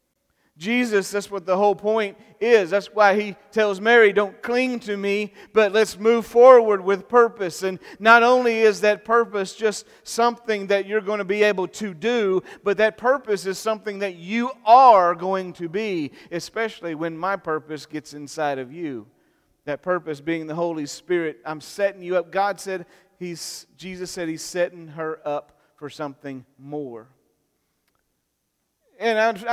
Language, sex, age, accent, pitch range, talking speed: English, male, 40-59, American, 150-200 Hz, 165 wpm